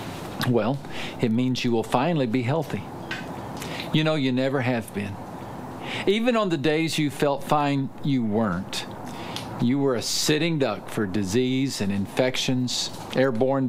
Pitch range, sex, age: 120-140 Hz, male, 50-69